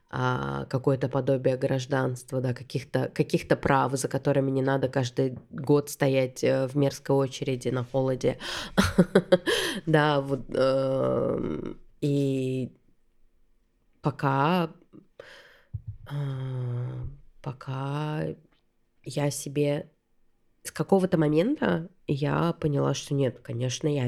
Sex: female